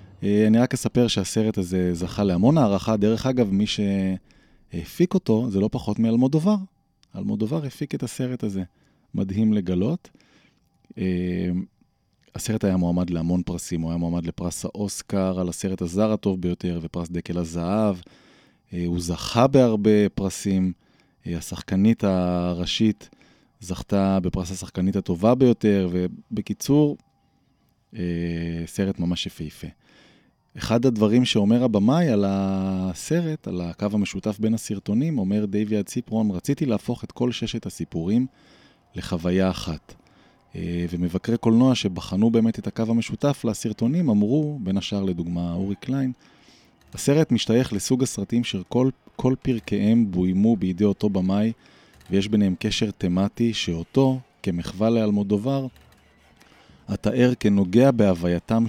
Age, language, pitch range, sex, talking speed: 20-39, Hebrew, 90-115 Hz, male, 125 wpm